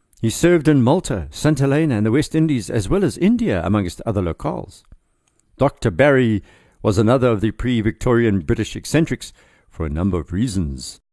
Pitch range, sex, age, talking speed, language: 95-130 Hz, male, 60-79, 165 wpm, English